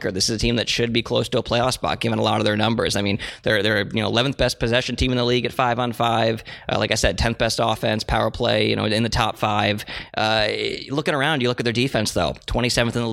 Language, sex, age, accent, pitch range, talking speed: English, male, 20-39, American, 110-125 Hz, 285 wpm